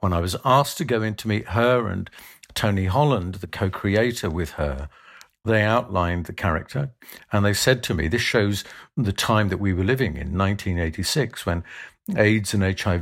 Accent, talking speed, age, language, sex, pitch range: British, 165 wpm, 50-69, English, male, 90-115 Hz